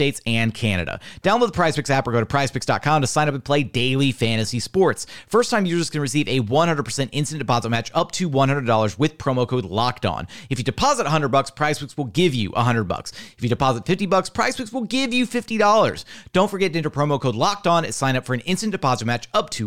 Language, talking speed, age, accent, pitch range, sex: English, 220 wpm, 40-59, American, 125-175 Hz, male